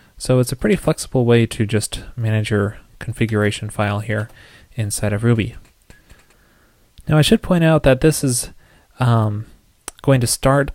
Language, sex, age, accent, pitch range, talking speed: English, male, 20-39, American, 105-125 Hz, 155 wpm